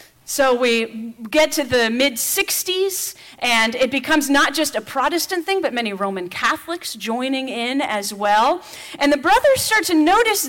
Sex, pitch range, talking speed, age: female, 225-295 Hz, 160 wpm, 40-59